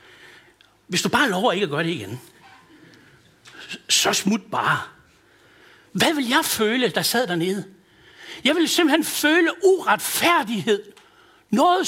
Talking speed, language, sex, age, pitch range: 125 wpm, Danish, male, 60-79, 210-330 Hz